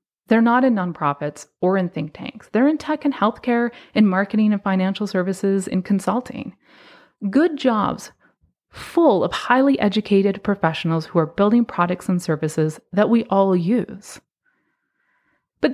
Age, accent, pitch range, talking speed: 30-49, American, 175-235 Hz, 145 wpm